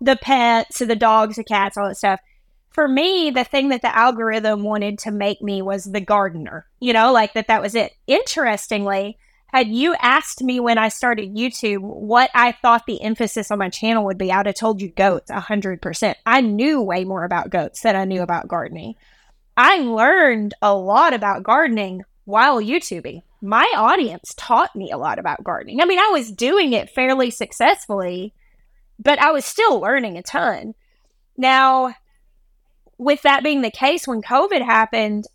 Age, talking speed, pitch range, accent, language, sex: 20-39, 180 wpm, 210-265 Hz, American, English, female